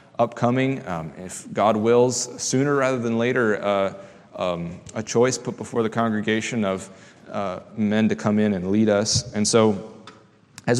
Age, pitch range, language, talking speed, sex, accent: 30-49, 105-125 Hz, English, 160 wpm, male, American